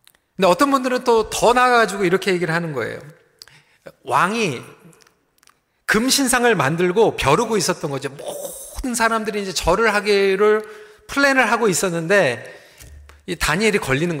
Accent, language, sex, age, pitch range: native, Korean, male, 40-59, 170-235 Hz